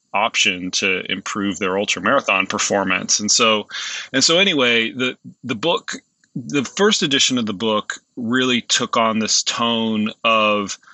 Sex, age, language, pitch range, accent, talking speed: male, 30-49, English, 100-115 Hz, American, 150 wpm